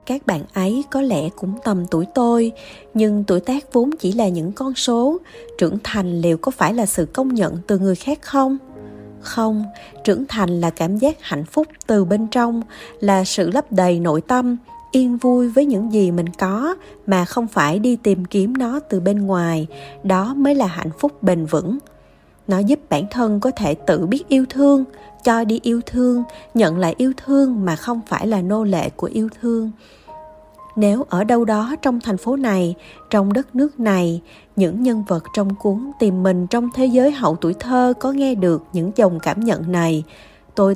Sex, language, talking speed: female, Vietnamese, 195 wpm